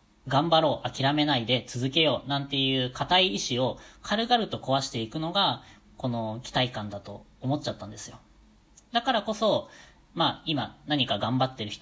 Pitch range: 115-170 Hz